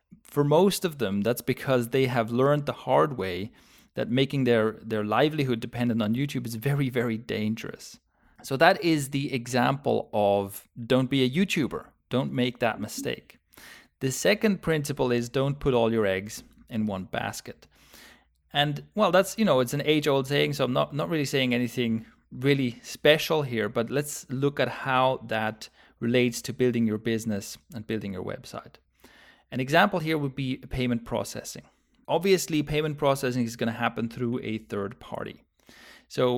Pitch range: 115-145 Hz